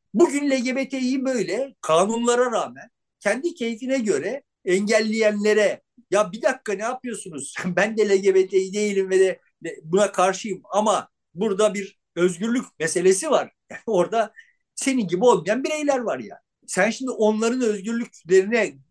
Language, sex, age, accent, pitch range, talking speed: Turkish, male, 50-69, native, 185-255 Hz, 135 wpm